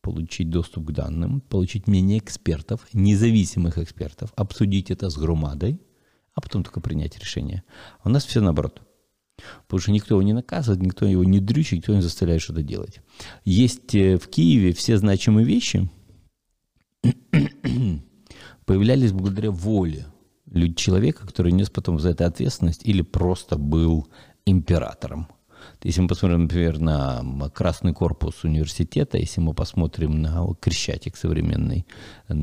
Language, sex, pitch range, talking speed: Russian, male, 85-100 Hz, 130 wpm